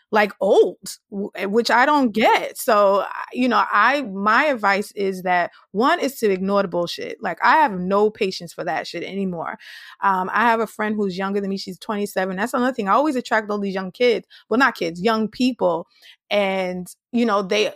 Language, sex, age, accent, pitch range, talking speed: English, female, 20-39, American, 190-230 Hz, 205 wpm